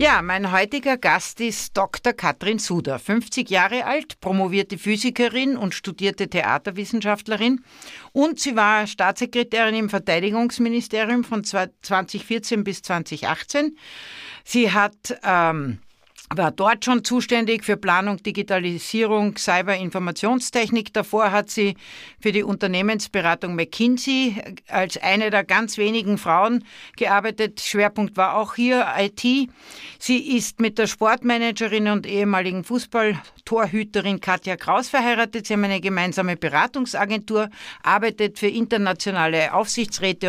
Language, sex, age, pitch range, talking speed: German, female, 60-79, 185-225 Hz, 115 wpm